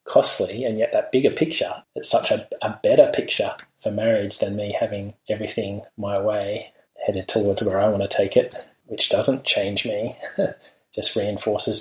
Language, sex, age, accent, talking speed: English, male, 20-39, Australian, 175 wpm